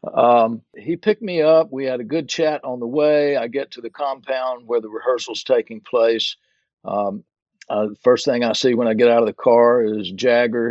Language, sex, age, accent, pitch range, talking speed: English, male, 50-69, American, 110-150 Hz, 215 wpm